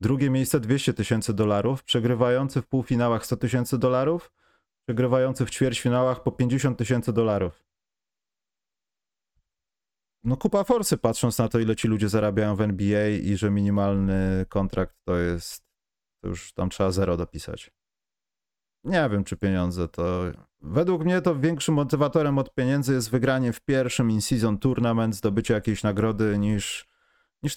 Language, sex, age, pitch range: Polish, male, 30-49, 100-130 Hz